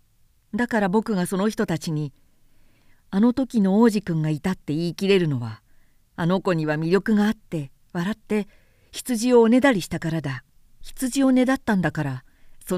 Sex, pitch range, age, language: female, 150-220 Hz, 50-69, Japanese